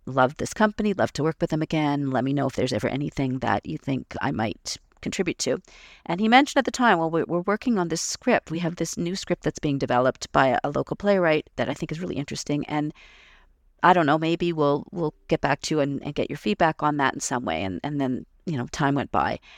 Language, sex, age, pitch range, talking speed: English, female, 40-59, 135-165 Hz, 250 wpm